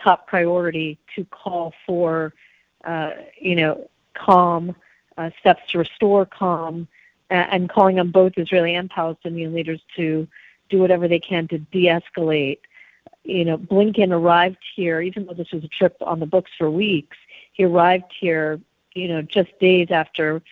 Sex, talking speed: female, 160 wpm